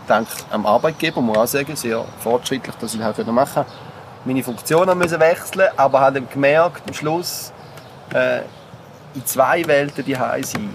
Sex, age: male, 30-49